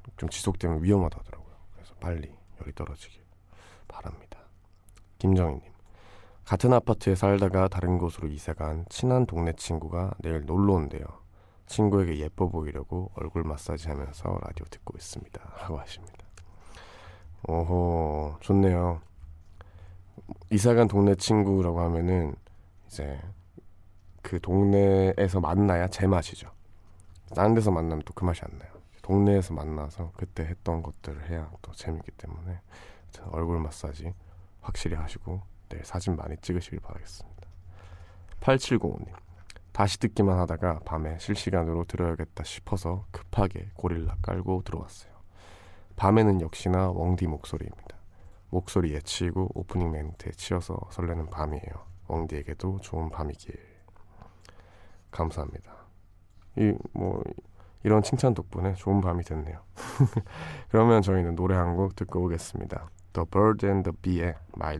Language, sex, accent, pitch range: Korean, male, native, 85-95 Hz